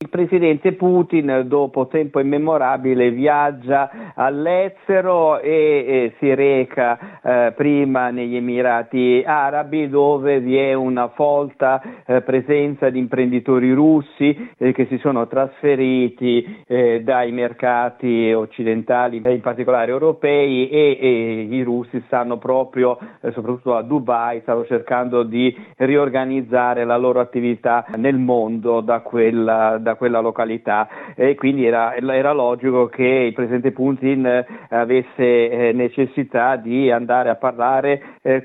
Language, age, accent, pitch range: Italian, 50-69, native, 125-145 Hz